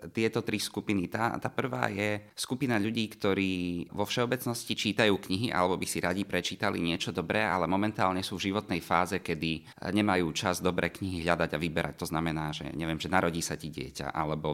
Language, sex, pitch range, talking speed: Slovak, male, 85-115 Hz, 185 wpm